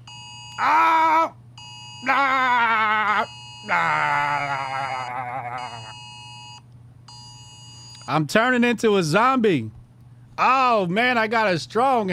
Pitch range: 120-170 Hz